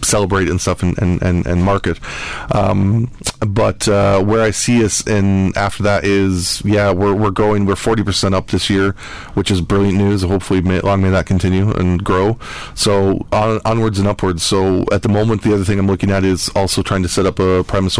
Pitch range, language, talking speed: 95-105 Hz, English, 205 wpm